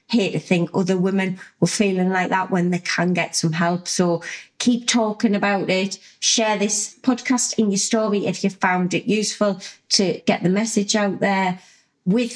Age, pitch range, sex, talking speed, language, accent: 30-49, 165-210 Hz, female, 185 wpm, English, British